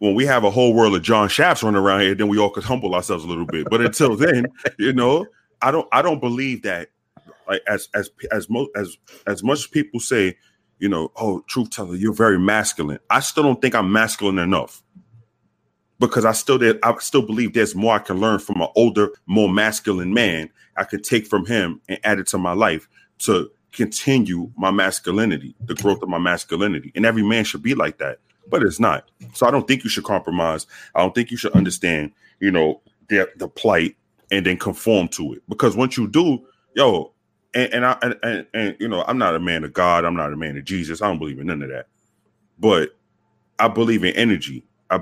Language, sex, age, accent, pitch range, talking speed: English, male, 30-49, American, 90-115 Hz, 225 wpm